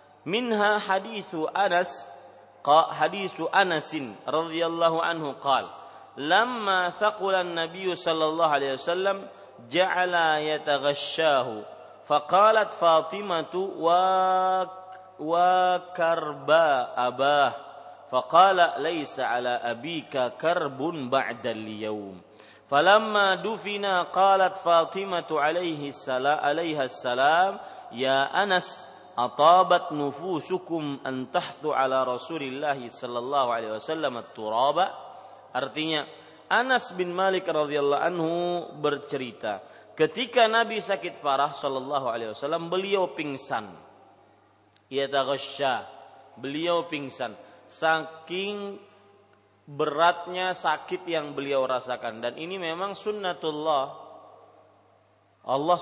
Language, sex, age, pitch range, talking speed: Malay, male, 30-49, 140-185 Hz, 85 wpm